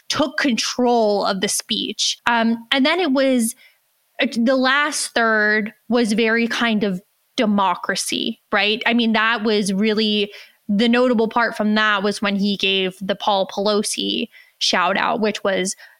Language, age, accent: English, 20-39, American